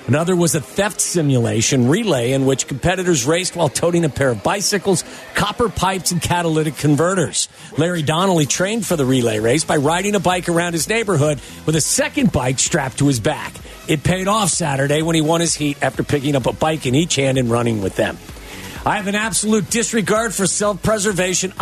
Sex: male